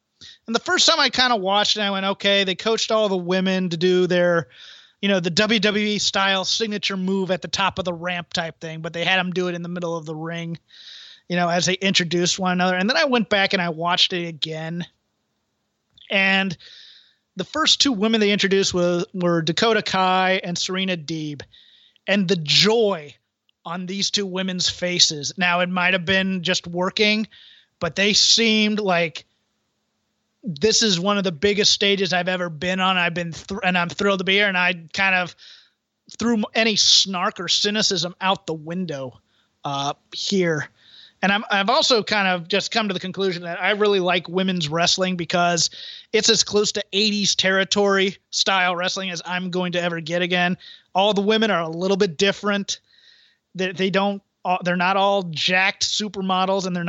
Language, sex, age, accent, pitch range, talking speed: English, male, 30-49, American, 175-200 Hz, 195 wpm